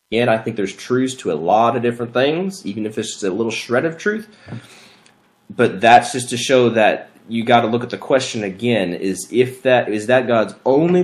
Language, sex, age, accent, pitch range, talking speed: English, male, 30-49, American, 105-140 Hz, 225 wpm